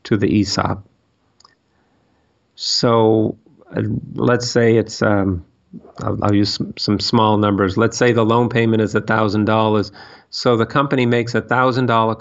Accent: American